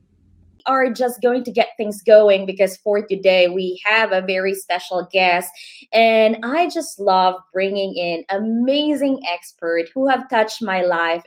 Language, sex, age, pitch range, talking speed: English, female, 20-39, 190-275 Hz, 155 wpm